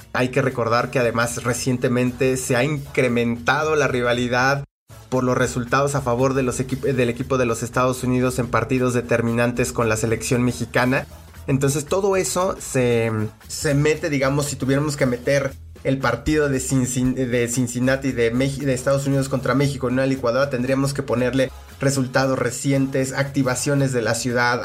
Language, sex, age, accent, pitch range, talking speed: English, male, 30-49, Mexican, 120-135 Hz, 160 wpm